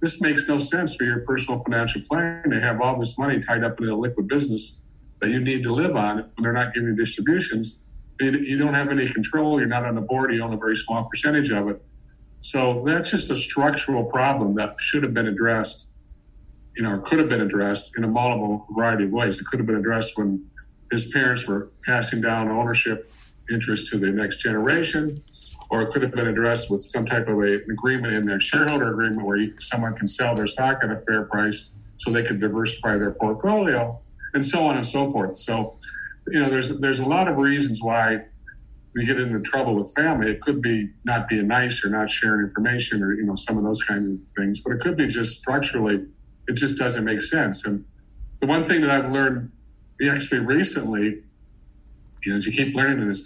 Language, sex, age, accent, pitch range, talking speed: English, male, 50-69, American, 105-130 Hz, 215 wpm